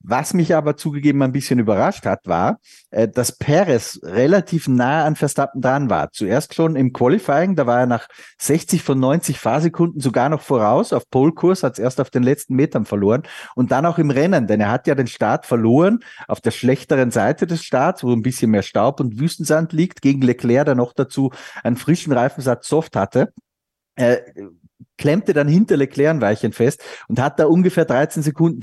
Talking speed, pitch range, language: 190 wpm, 125-155 Hz, German